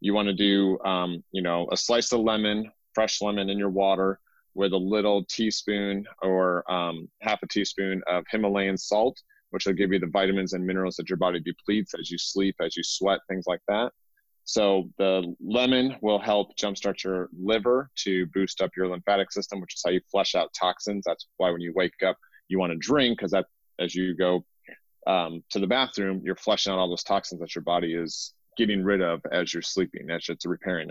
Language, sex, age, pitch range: English, male, 30-49, 90-105 Hz